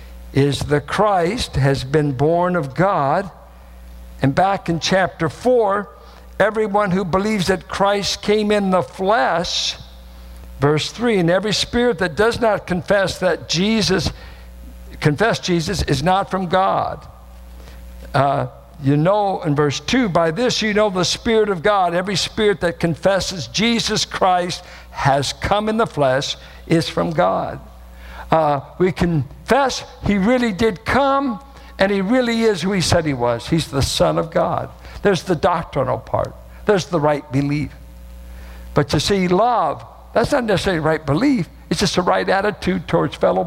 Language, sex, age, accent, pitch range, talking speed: English, male, 60-79, American, 140-215 Hz, 155 wpm